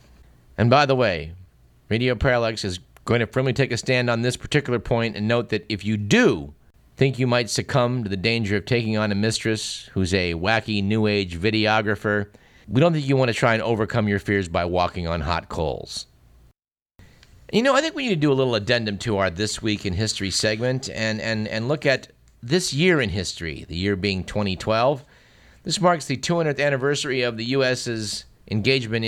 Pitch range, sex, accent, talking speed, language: 100-135 Hz, male, American, 200 wpm, English